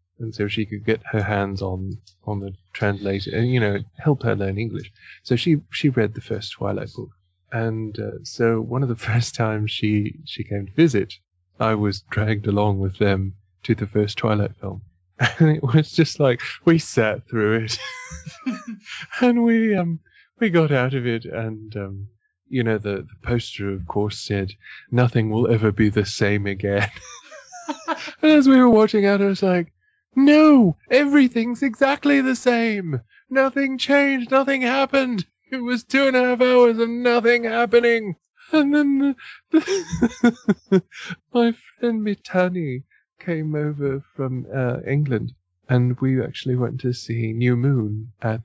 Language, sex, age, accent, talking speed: English, male, 20-39, British, 160 wpm